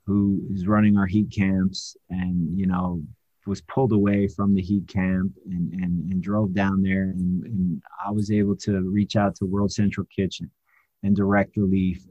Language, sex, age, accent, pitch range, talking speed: English, male, 30-49, American, 95-115 Hz, 185 wpm